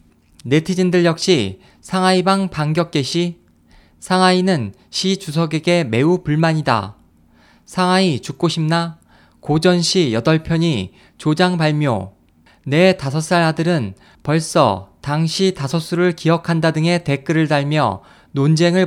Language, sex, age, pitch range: Korean, male, 20-39, 135-180 Hz